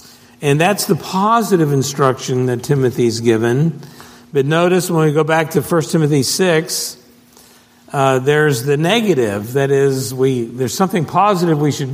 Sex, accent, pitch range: male, American, 120-150 Hz